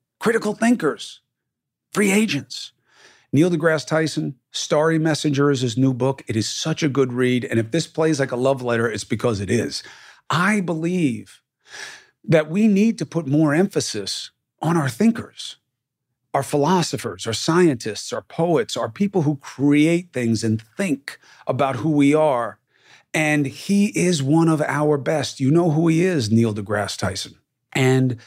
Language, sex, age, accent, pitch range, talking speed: English, male, 40-59, American, 120-165 Hz, 160 wpm